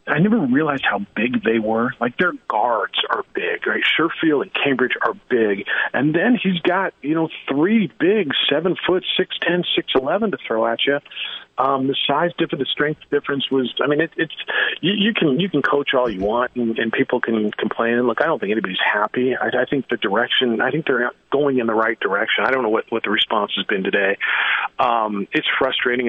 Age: 40-59